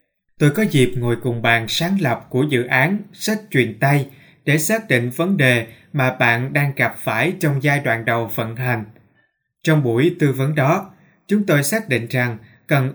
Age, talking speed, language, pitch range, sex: 20-39, 190 wpm, Vietnamese, 125-175 Hz, male